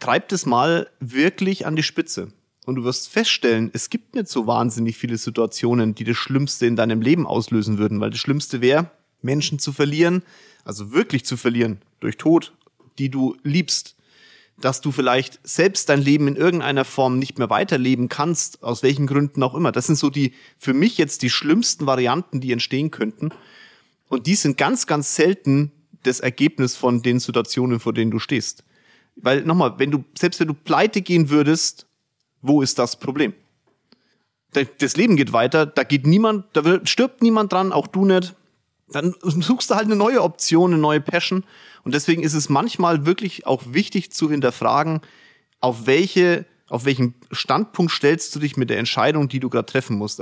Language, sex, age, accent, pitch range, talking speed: German, male, 30-49, German, 125-170 Hz, 180 wpm